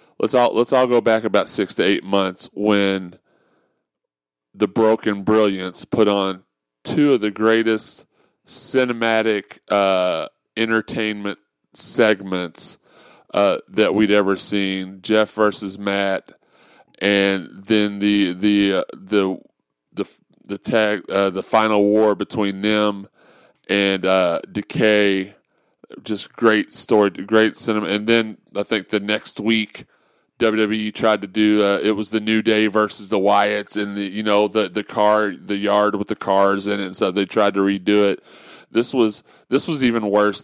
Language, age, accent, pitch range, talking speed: English, 30-49, American, 100-110 Hz, 155 wpm